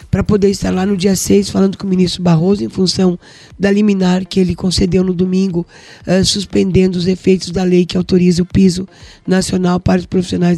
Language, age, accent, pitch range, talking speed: Portuguese, 20-39, Brazilian, 180-200 Hz, 195 wpm